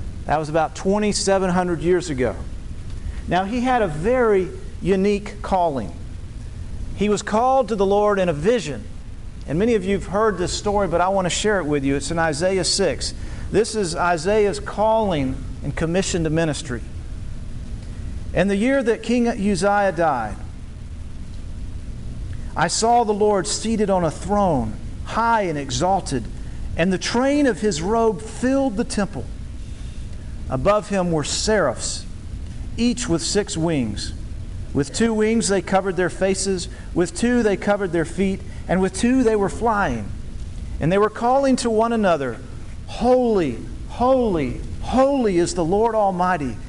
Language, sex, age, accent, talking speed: English, male, 50-69, American, 150 wpm